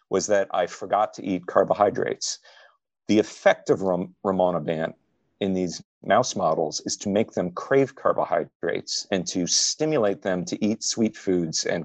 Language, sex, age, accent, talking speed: English, male, 40-59, American, 150 wpm